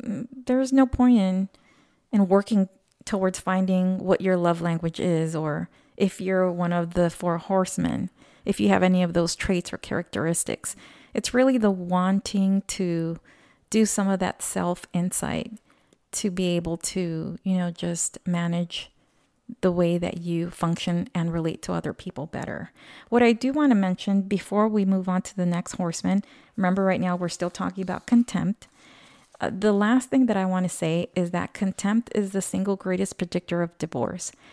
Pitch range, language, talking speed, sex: 175-210 Hz, English, 170 wpm, female